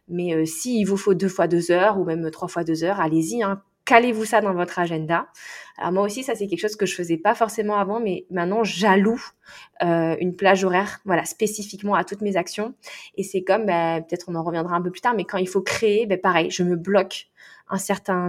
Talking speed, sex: 240 wpm, female